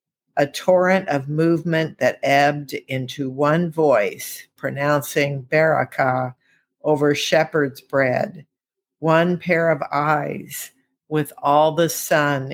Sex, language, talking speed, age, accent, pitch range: female, English, 105 wpm, 50-69, American, 140-165 Hz